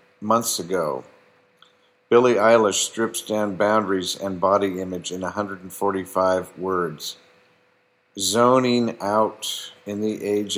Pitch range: 100-120 Hz